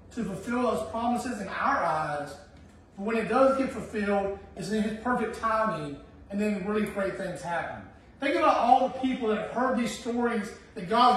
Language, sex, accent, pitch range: English, male, American, 200-260 Hz